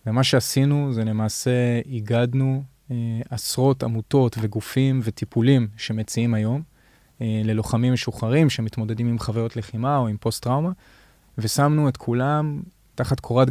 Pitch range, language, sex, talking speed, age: 115-130 Hz, Hebrew, male, 125 wpm, 20-39